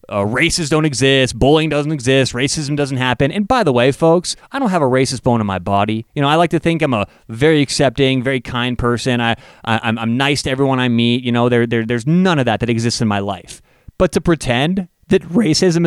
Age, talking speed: 30-49, 240 wpm